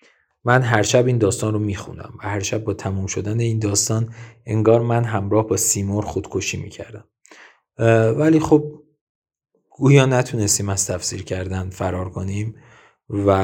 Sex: male